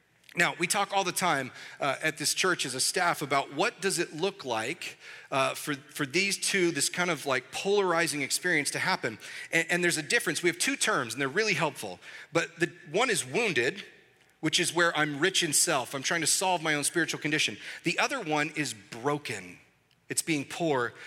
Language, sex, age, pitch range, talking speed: English, male, 40-59, 135-170 Hz, 210 wpm